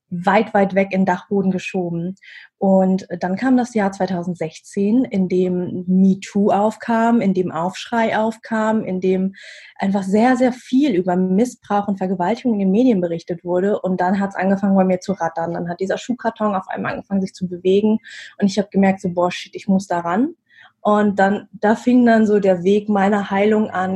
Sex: female